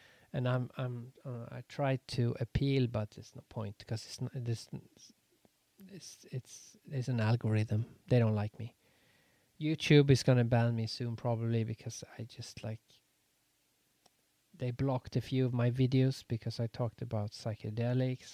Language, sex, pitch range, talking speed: English, male, 120-140 Hz, 155 wpm